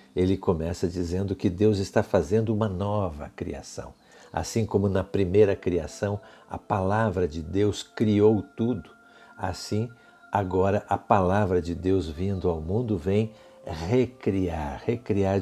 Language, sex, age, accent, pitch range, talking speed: Portuguese, male, 60-79, Brazilian, 85-105 Hz, 130 wpm